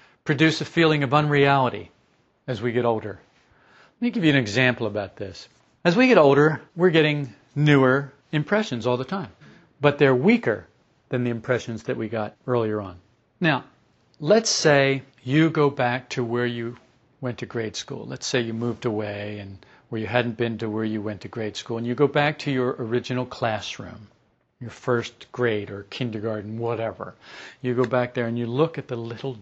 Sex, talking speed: male, 190 wpm